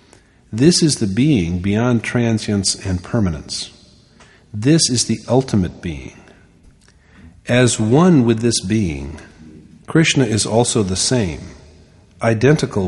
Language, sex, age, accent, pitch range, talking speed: English, male, 50-69, American, 90-125 Hz, 110 wpm